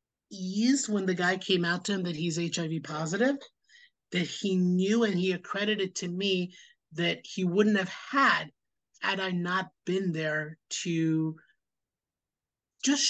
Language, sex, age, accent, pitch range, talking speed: English, male, 30-49, American, 170-205 Hz, 140 wpm